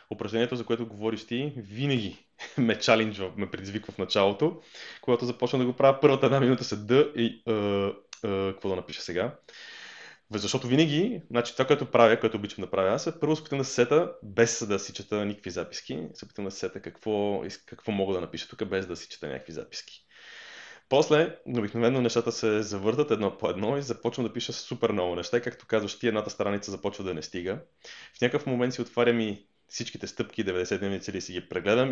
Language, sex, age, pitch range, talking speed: Bulgarian, male, 20-39, 100-120 Hz, 190 wpm